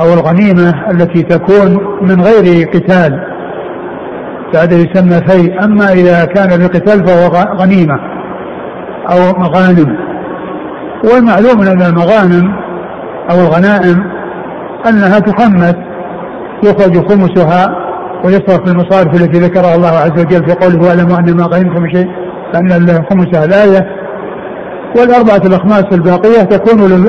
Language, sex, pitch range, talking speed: Arabic, male, 175-200 Hz, 110 wpm